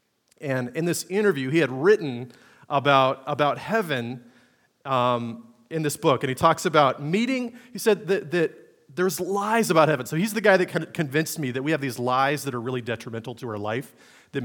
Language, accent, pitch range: English, American, 125-175 Hz